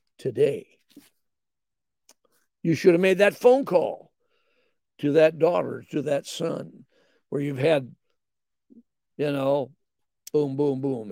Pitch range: 140-180 Hz